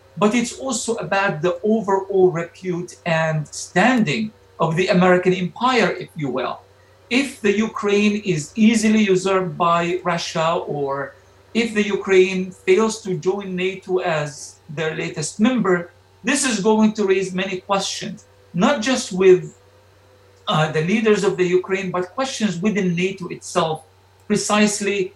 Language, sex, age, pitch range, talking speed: English, male, 50-69, 175-210 Hz, 140 wpm